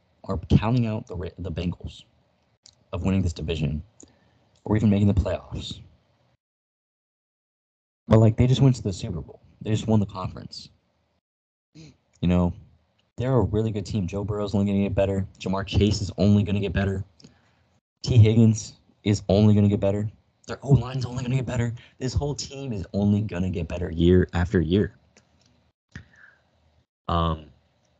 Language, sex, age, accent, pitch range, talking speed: English, male, 20-39, American, 85-105 Hz, 170 wpm